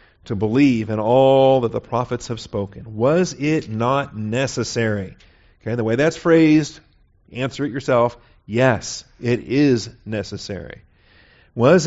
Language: English